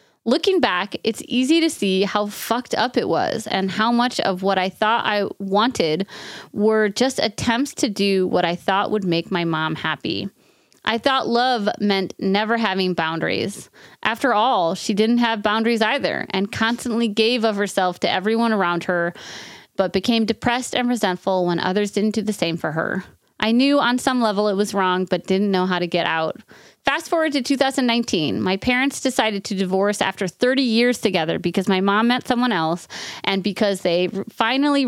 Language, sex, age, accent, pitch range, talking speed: English, female, 30-49, American, 190-240 Hz, 185 wpm